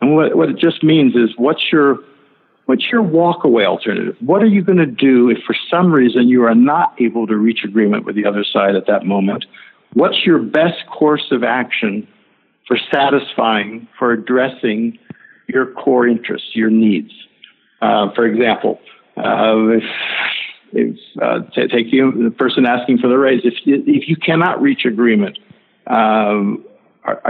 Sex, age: male, 60-79